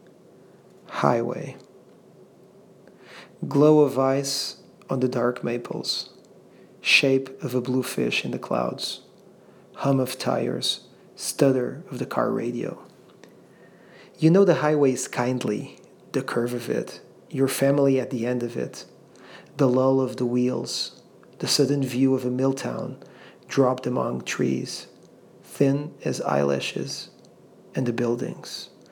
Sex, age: male, 40-59